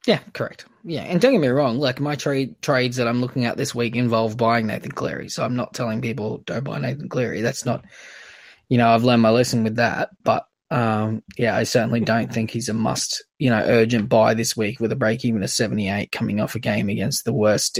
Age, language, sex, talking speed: 10-29, English, male, 235 wpm